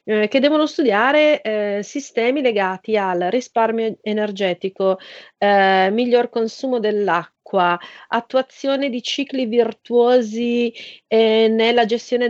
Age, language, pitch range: 30-49, Italian, 190-240 Hz